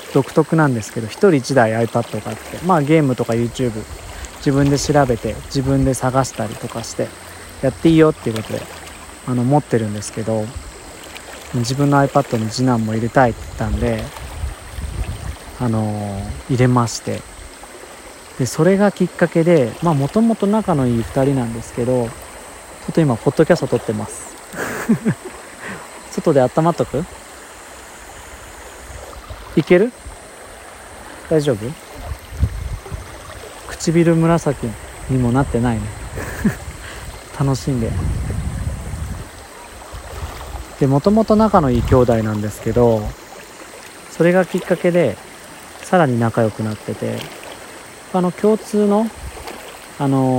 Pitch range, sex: 110-145 Hz, male